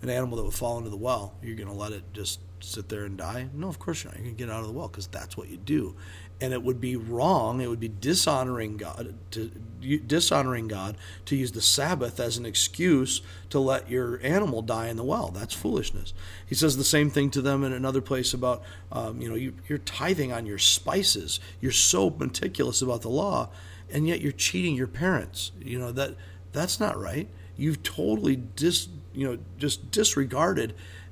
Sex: male